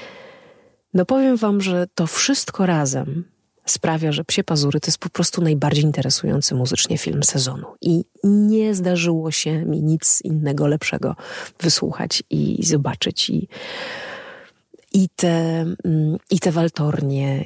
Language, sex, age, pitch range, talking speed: Polish, female, 30-49, 150-185 Hz, 120 wpm